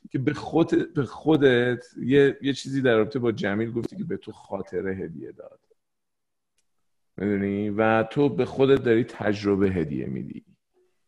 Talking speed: 150 wpm